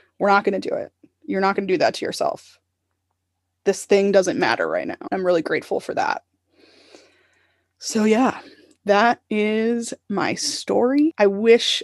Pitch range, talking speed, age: 185-225 Hz, 165 wpm, 20-39